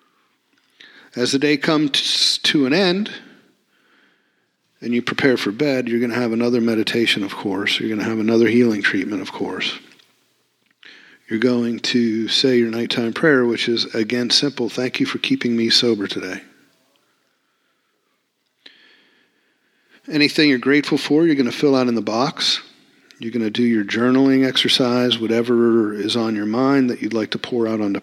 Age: 50-69